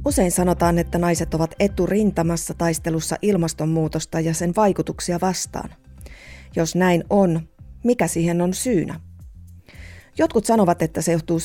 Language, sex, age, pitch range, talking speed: Finnish, female, 30-49, 160-190 Hz, 125 wpm